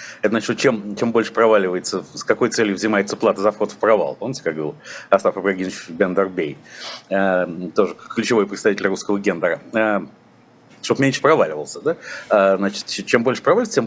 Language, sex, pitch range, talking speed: Russian, male, 100-125 Hz, 165 wpm